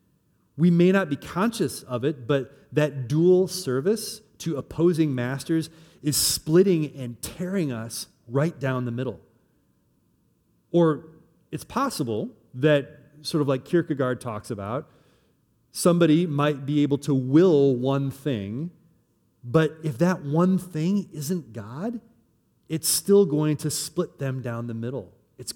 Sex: male